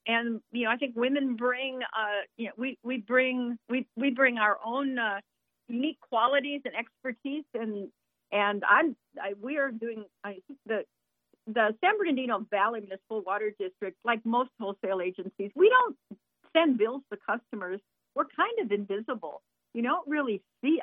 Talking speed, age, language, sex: 165 wpm, 50-69, English, female